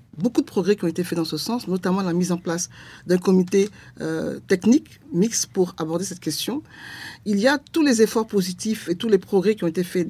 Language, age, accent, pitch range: French, 50-69, French, 170-215 Hz